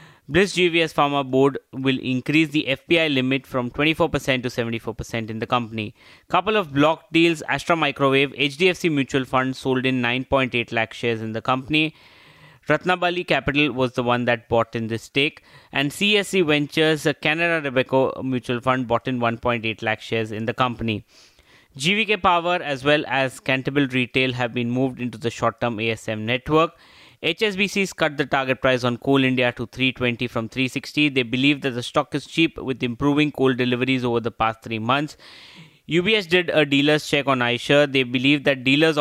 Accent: Indian